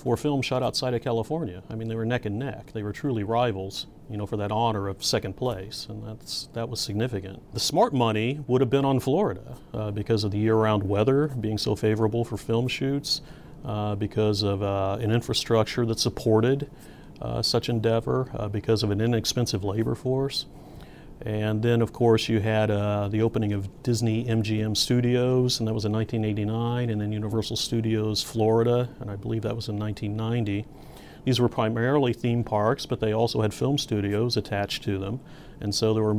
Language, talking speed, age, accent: English, 190 wpm, 40-59, American